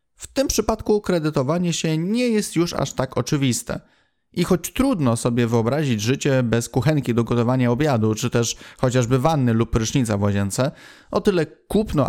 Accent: native